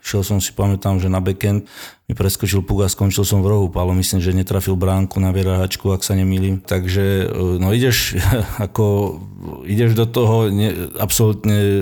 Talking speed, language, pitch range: 175 wpm, Slovak, 95-105 Hz